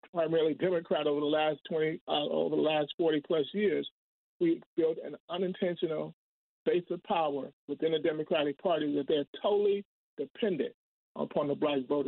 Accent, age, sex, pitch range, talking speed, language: American, 50-69, male, 140-175 Hz, 160 wpm, English